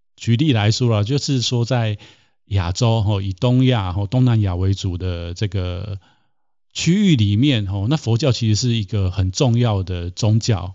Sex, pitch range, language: male, 100-125 Hz, Chinese